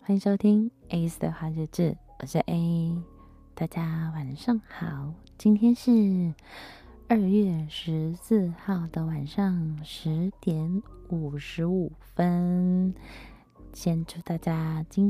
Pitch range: 155-195 Hz